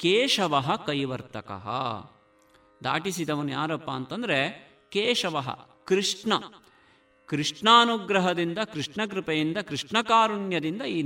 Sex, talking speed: male, 65 wpm